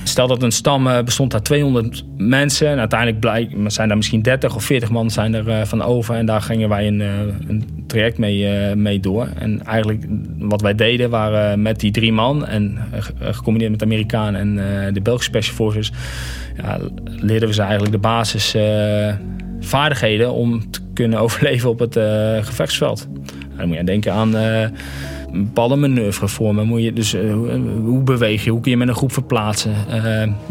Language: Dutch